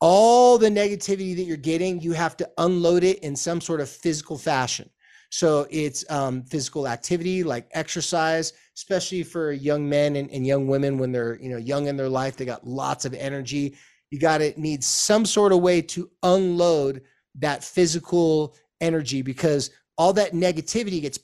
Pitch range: 135-175 Hz